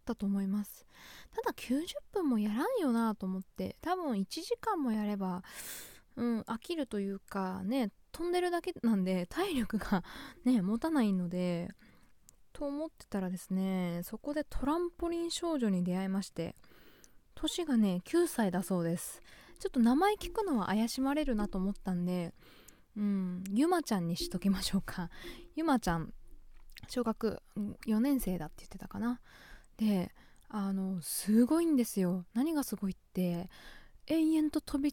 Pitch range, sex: 190-290 Hz, female